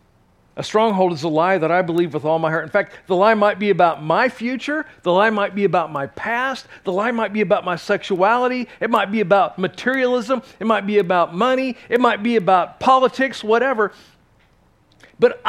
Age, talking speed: 50-69, 200 wpm